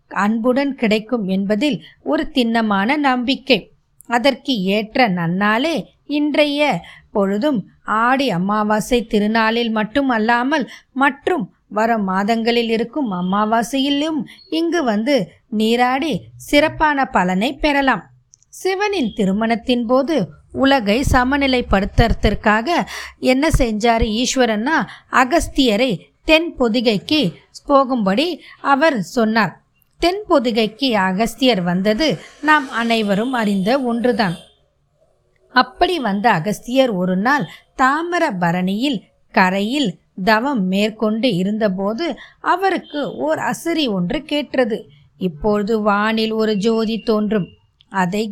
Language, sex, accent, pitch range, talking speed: Tamil, female, native, 210-275 Hz, 85 wpm